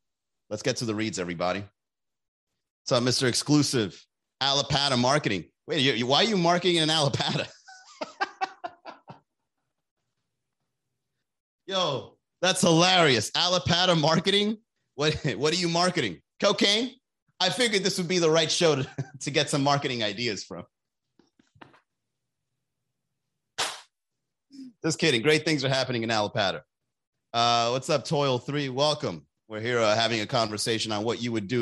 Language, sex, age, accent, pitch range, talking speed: English, male, 30-49, American, 115-170 Hz, 135 wpm